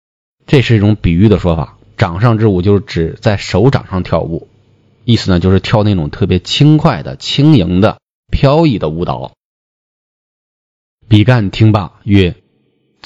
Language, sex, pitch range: Chinese, male, 90-115 Hz